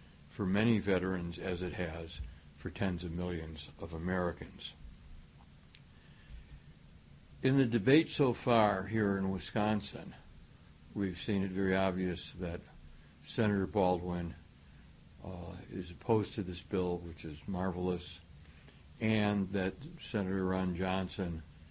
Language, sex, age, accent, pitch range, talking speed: English, male, 60-79, American, 85-100 Hz, 115 wpm